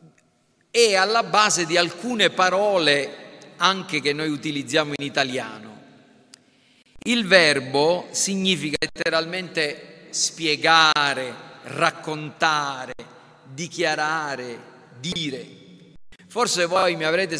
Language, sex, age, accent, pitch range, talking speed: Italian, male, 40-59, native, 145-185 Hz, 85 wpm